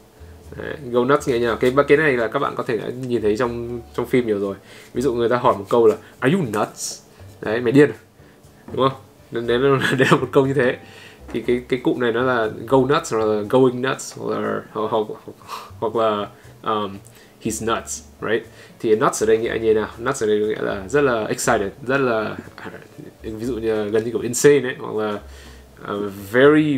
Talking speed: 195 wpm